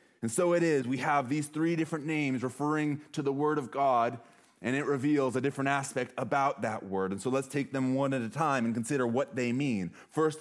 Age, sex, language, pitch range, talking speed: 30-49, male, English, 130-150 Hz, 230 wpm